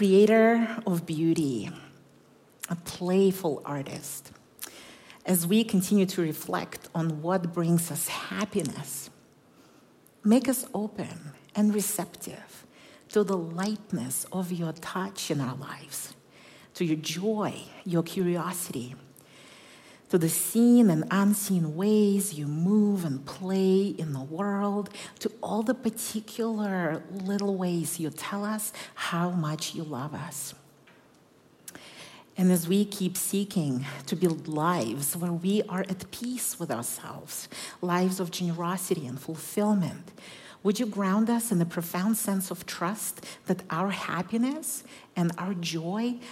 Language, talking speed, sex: English, 125 wpm, female